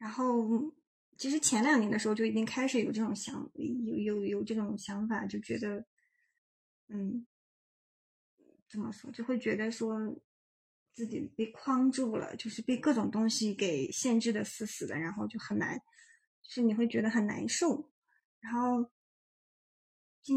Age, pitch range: 20-39, 215-250 Hz